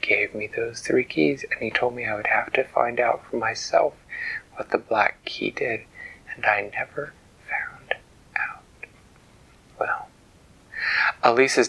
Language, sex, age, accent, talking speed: English, male, 30-49, American, 150 wpm